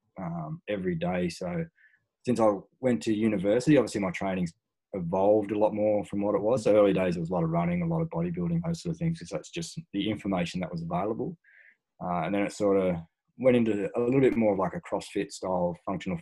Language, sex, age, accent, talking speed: English, male, 20-39, Australian, 235 wpm